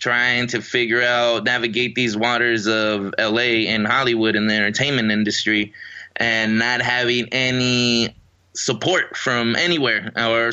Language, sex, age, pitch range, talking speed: English, male, 20-39, 110-125 Hz, 130 wpm